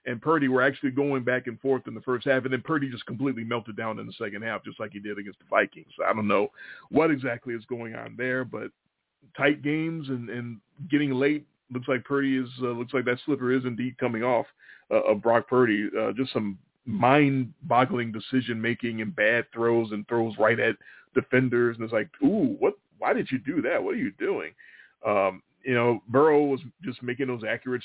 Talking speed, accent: 220 wpm, American